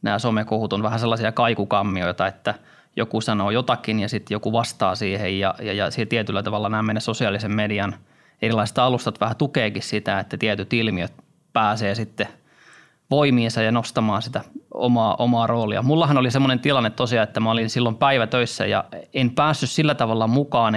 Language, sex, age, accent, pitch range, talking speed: Finnish, male, 20-39, native, 110-125 Hz, 170 wpm